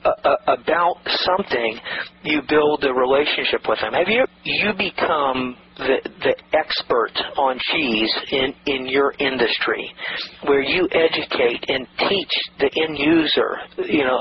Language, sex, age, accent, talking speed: English, male, 40-59, American, 135 wpm